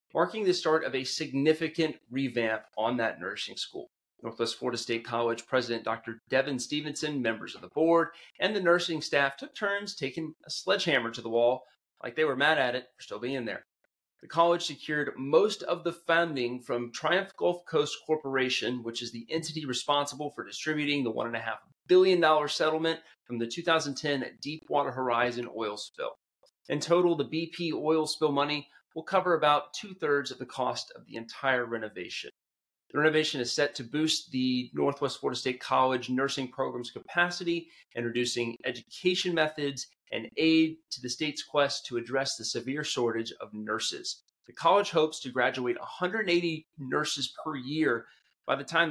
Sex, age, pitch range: male, 30-49, 120-160 Hz